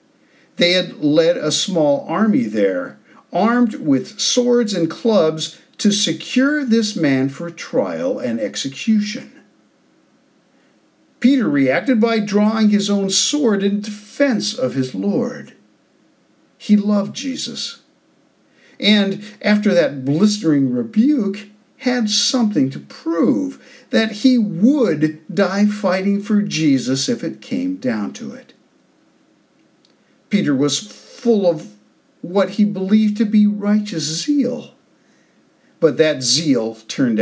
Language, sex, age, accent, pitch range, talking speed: English, male, 50-69, American, 175-250 Hz, 115 wpm